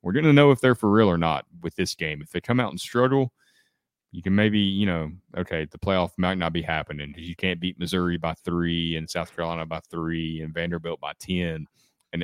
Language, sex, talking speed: English, male, 235 wpm